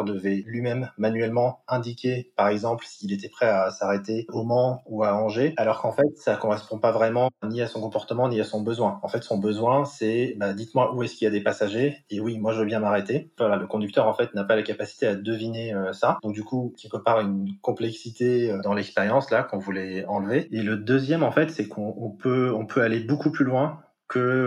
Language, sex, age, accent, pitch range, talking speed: French, male, 20-39, French, 105-125 Hz, 230 wpm